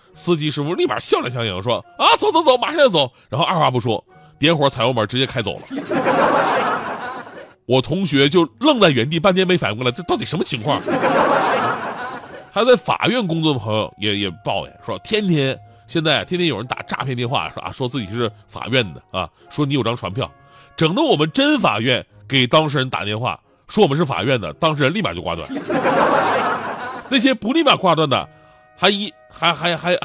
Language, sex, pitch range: Chinese, male, 115-180 Hz